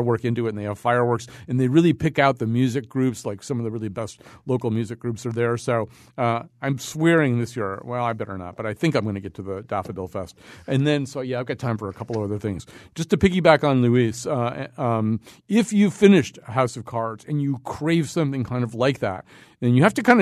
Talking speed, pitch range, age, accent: 255 wpm, 110-145 Hz, 40-59, American